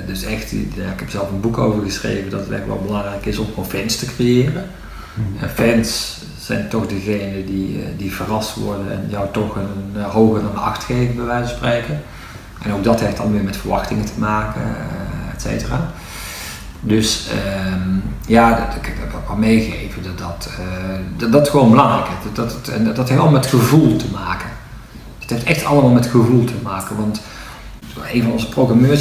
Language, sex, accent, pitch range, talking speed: Dutch, male, Dutch, 105-125 Hz, 195 wpm